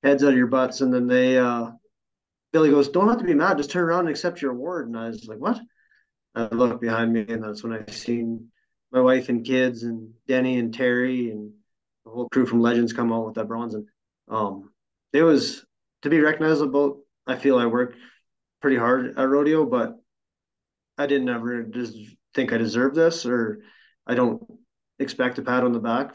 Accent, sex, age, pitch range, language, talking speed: American, male, 30-49, 115-130 Hz, English, 205 wpm